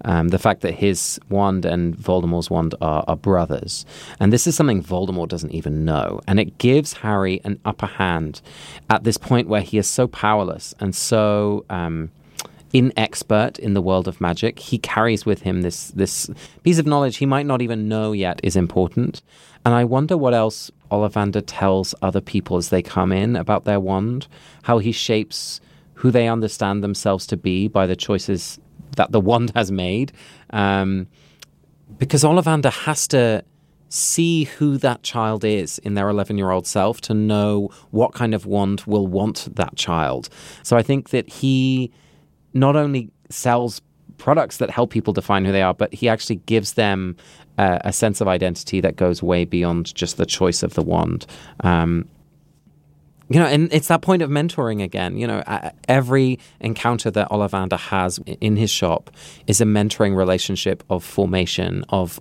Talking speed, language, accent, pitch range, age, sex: 175 wpm, English, British, 95-120 Hz, 30-49, male